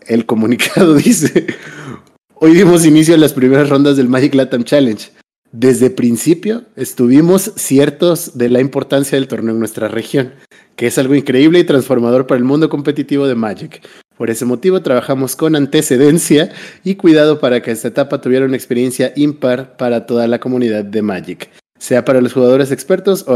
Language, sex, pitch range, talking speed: Spanish, male, 120-145 Hz, 170 wpm